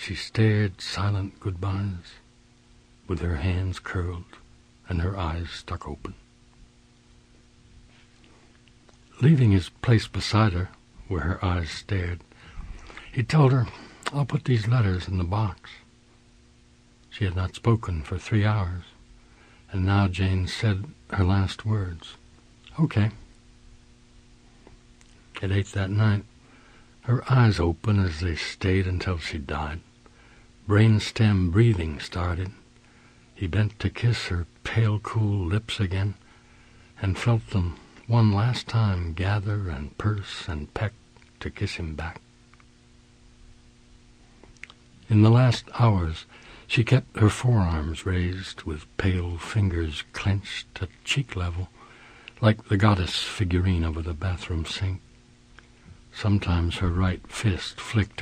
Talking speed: 120 wpm